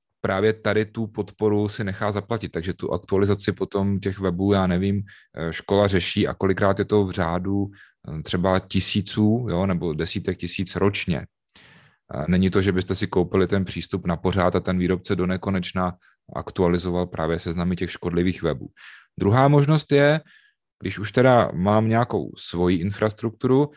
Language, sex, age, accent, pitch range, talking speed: Czech, male, 30-49, native, 90-110 Hz, 155 wpm